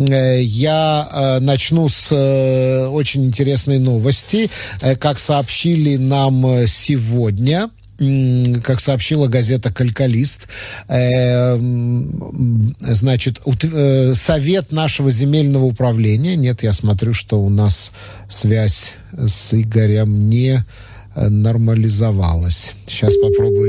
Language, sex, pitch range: Russian, male, 110-145 Hz